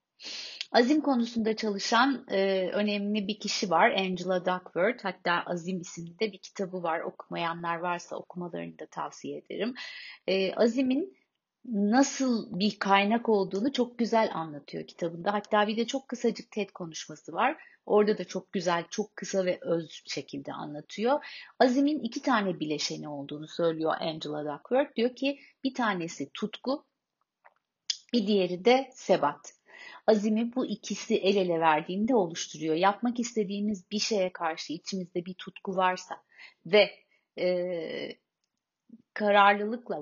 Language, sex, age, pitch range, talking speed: Turkish, female, 30-49, 175-240 Hz, 125 wpm